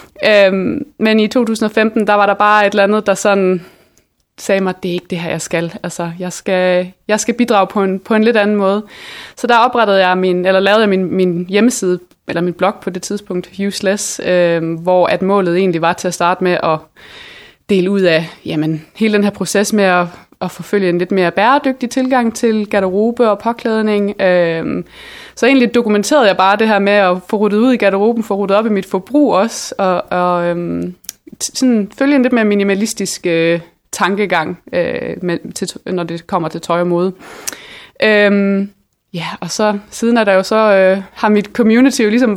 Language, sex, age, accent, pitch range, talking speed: Danish, female, 20-39, native, 185-220 Hz, 205 wpm